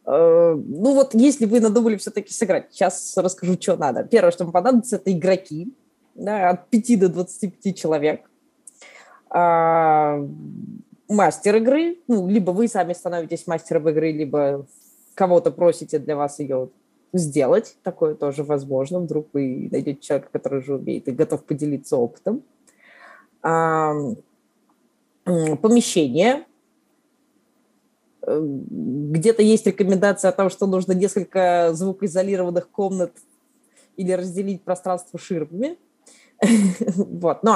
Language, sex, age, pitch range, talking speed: Russian, female, 20-39, 165-240 Hz, 115 wpm